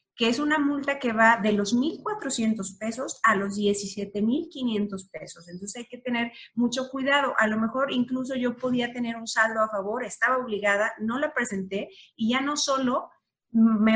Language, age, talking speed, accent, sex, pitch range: Spanish, 30-49, 175 wpm, Mexican, female, 200-245 Hz